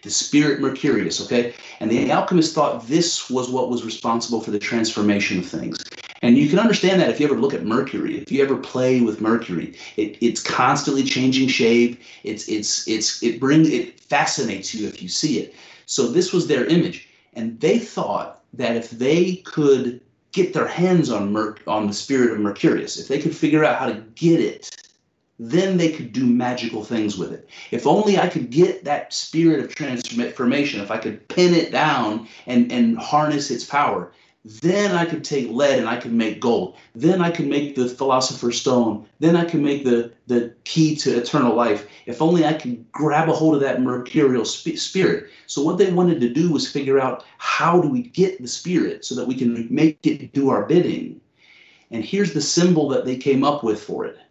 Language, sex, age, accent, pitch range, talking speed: English, male, 40-59, American, 120-165 Hz, 205 wpm